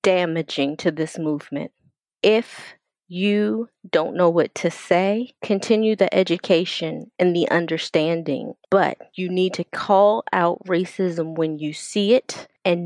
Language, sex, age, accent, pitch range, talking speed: English, female, 20-39, American, 165-215 Hz, 135 wpm